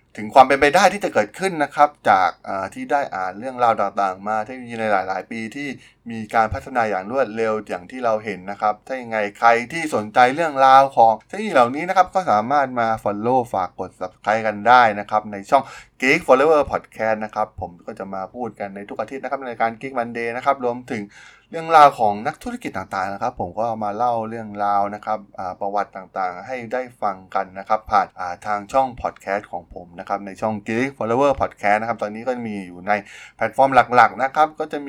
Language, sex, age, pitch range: Thai, male, 20-39, 105-130 Hz